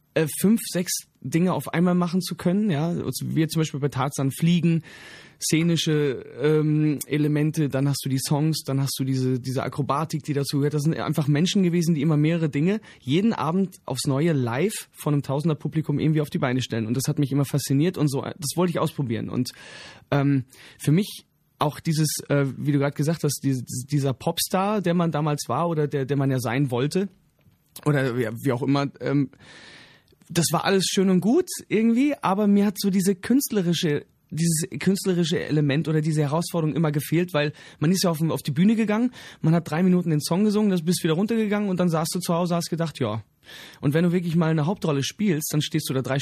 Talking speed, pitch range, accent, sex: 210 wpm, 140-175 Hz, German, male